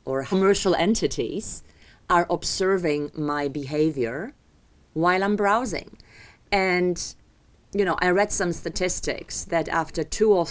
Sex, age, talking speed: female, 40-59, 120 wpm